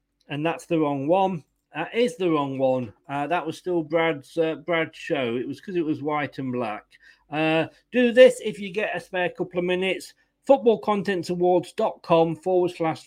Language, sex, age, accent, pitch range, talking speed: English, male, 40-59, British, 155-190 Hz, 200 wpm